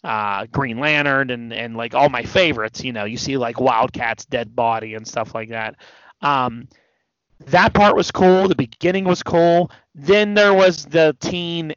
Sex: male